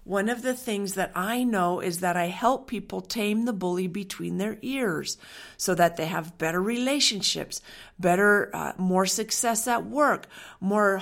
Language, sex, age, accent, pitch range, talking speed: English, female, 50-69, American, 185-235 Hz, 170 wpm